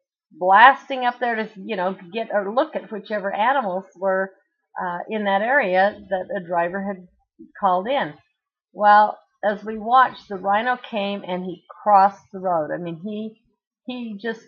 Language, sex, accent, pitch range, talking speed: English, female, American, 190-255 Hz, 165 wpm